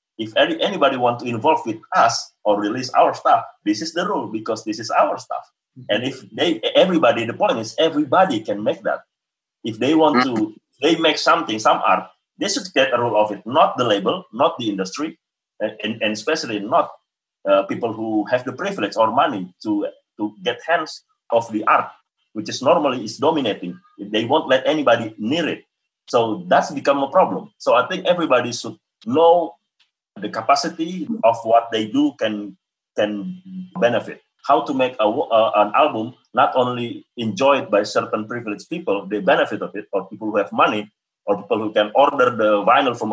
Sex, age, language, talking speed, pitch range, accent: male, 30-49, English, 185 wpm, 110-185 Hz, Indonesian